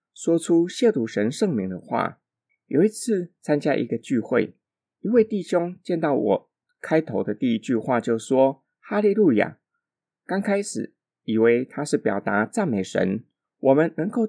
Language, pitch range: Chinese, 125-210 Hz